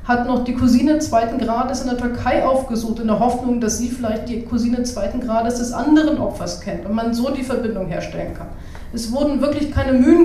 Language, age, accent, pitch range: German, 40-59, German, 225-265 Hz